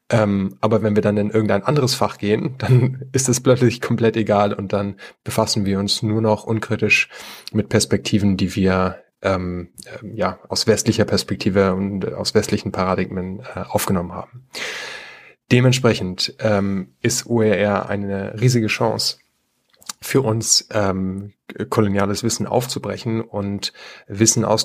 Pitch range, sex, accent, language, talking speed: 100-115 Hz, male, German, German, 135 wpm